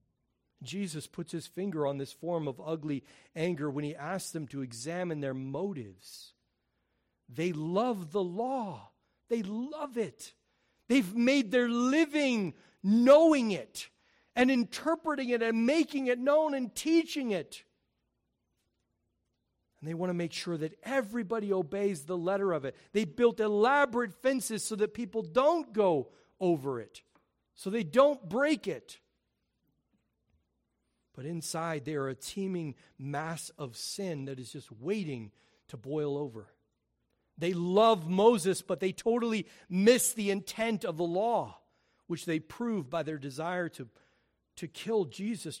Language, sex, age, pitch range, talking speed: English, male, 40-59, 145-225 Hz, 140 wpm